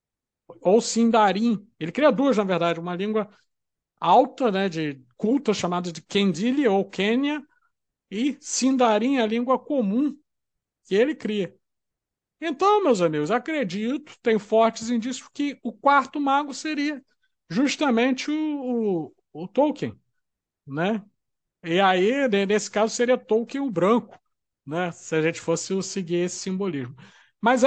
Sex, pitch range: male, 175-240 Hz